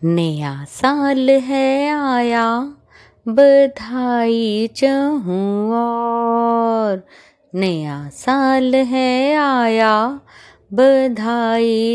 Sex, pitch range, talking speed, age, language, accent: female, 220-270 Hz, 55 wpm, 20-39, Hindi, native